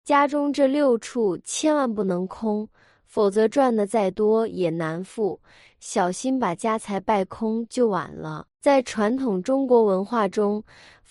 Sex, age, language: female, 20-39, Chinese